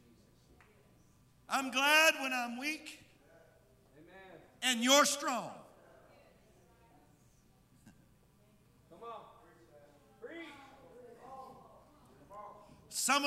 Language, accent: English, American